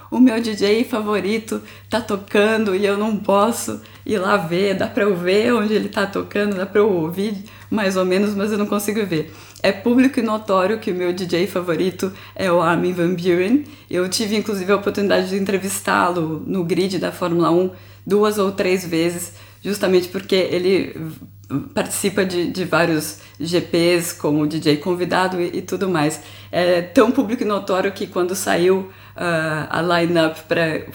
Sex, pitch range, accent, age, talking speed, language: female, 175-210 Hz, Brazilian, 20-39, 180 wpm, Portuguese